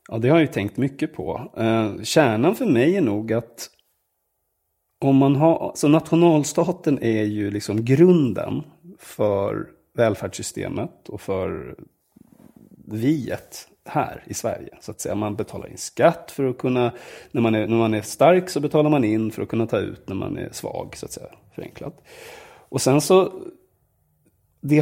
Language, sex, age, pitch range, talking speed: English, male, 30-49, 115-160 Hz, 165 wpm